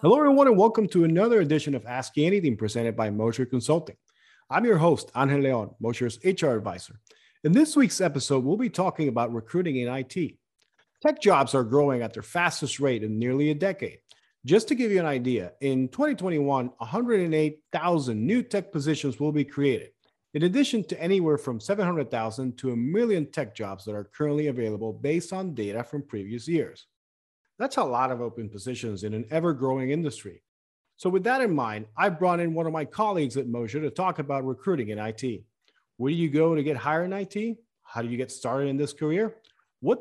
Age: 40-59